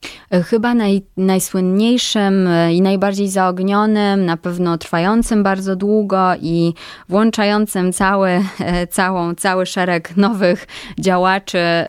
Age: 20-39